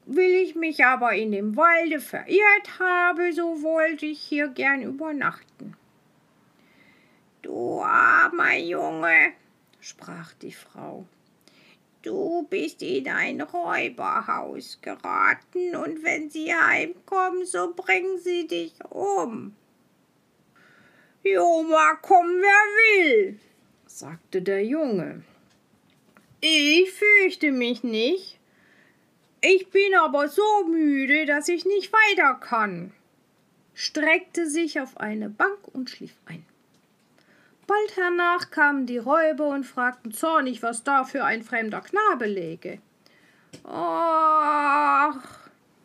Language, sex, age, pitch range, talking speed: German, female, 50-69, 275-365 Hz, 105 wpm